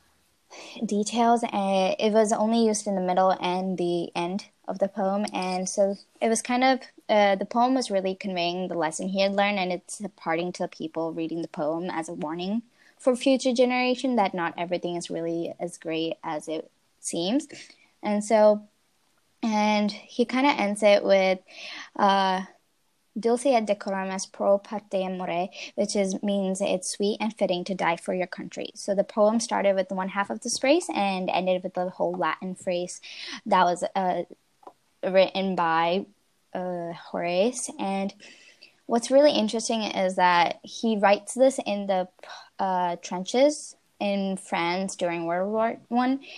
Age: 10-29